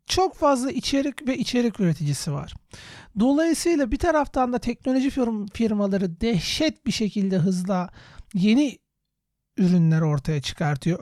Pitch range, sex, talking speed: 185-235 Hz, male, 115 wpm